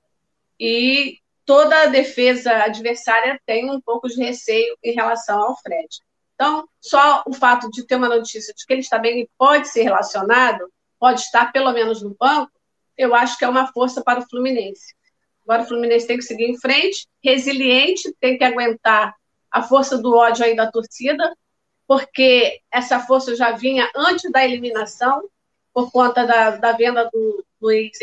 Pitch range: 230-285 Hz